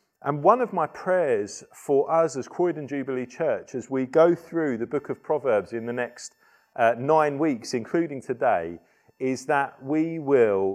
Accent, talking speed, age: British, 175 wpm, 40-59